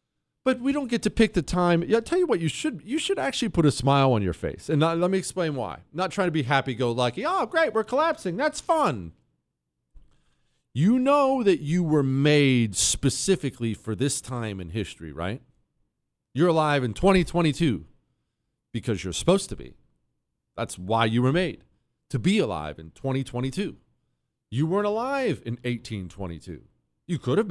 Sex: male